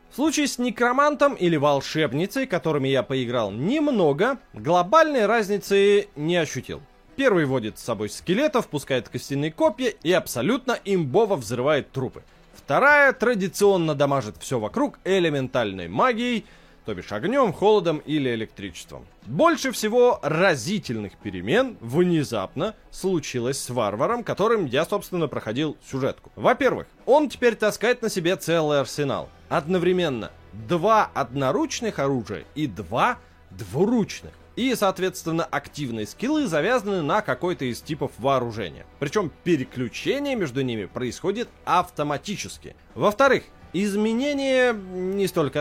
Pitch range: 130-215 Hz